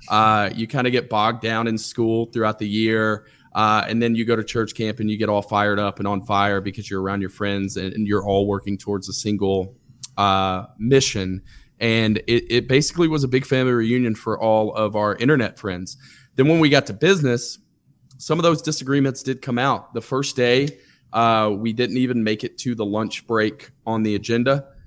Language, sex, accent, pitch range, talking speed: English, male, American, 100-125 Hz, 210 wpm